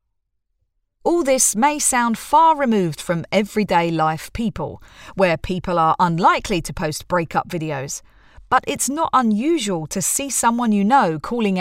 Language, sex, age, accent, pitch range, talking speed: English, female, 40-59, British, 165-225 Hz, 145 wpm